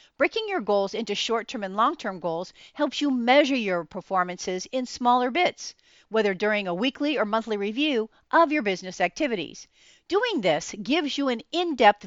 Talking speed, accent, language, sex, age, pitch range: 165 wpm, American, English, female, 50-69, 205-280 Hz